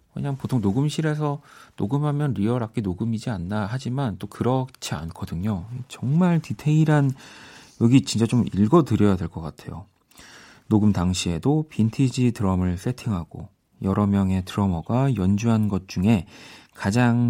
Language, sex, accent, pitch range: Korean, male, native, 95-125 Hz